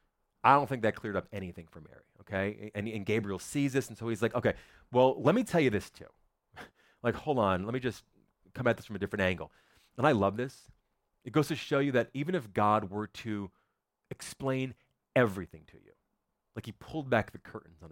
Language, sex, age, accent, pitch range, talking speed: English, male, 30-49, American, 100-130 Hz, 220 wpm